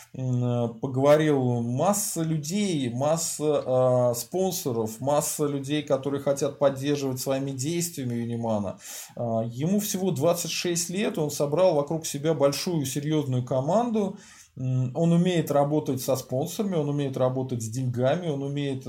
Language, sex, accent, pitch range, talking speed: Russian, male, native, 130-170 Hz, 120 wpm